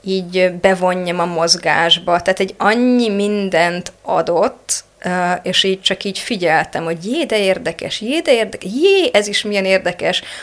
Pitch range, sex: 170-195 Hz, female